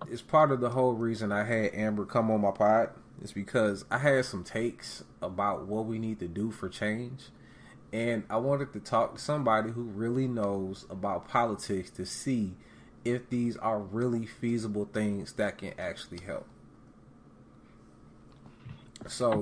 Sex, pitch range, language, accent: male, 100-120 Hz, English, American